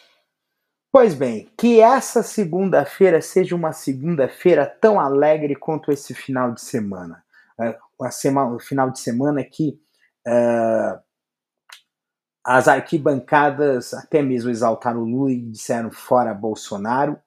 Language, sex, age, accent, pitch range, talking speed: Portuguese, male, 30-49, Brazilian, 110-150 Hz, 110 wpm